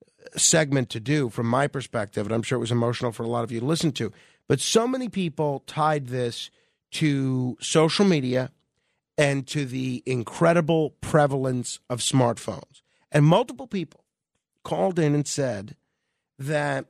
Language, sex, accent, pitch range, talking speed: English, male, American, 130-165 Hz, 155 wpm